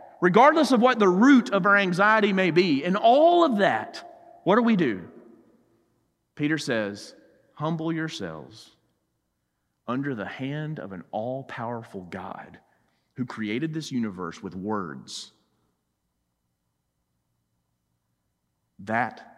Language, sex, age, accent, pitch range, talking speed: English, male, 30-49, American, 95-155 Hz, 110 wpm